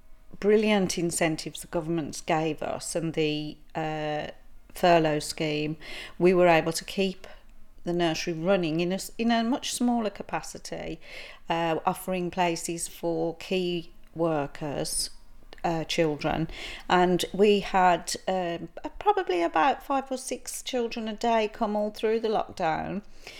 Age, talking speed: 40-59, 130 wpm